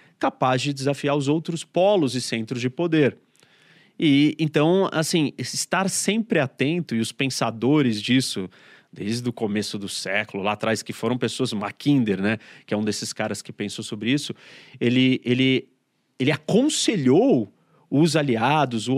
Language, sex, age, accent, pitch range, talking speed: Portuguese, male, 30-49, Brazilian, 110-145 Hz, 150 wpm